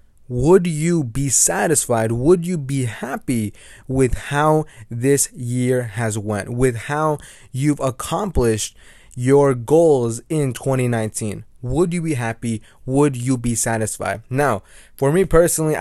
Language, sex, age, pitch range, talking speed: English, male, 20-39, 115-150 Hz, 130 wpm